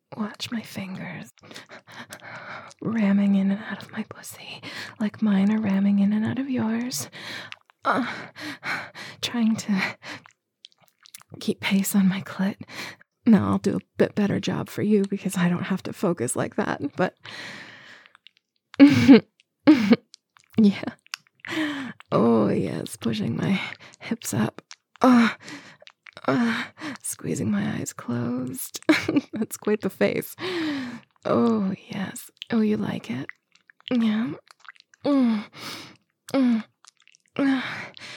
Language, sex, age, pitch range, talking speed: English, female, 20-39, 195-240 Hz, 115 wpm